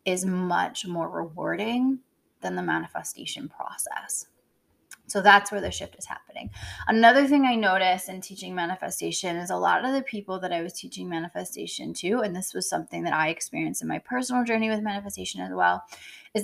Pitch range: 170-230 Hz